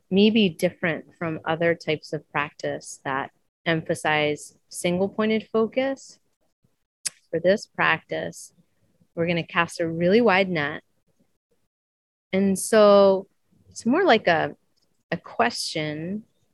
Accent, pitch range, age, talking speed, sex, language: American, 150-185 Hz, 30-49, 110 wpm, female, English